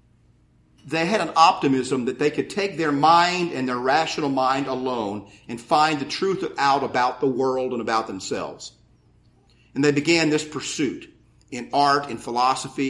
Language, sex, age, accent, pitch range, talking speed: English, male, 50-69, American, 130-175 Hz, 165 wpm